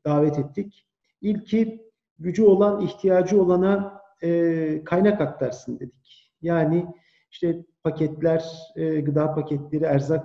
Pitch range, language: 155-195 Hz, Turkish